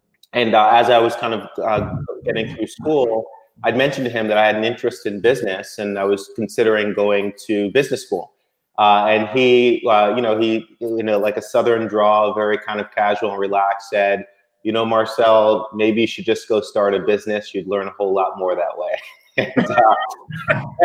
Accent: American